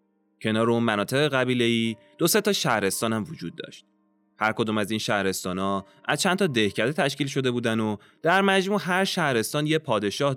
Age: 20-39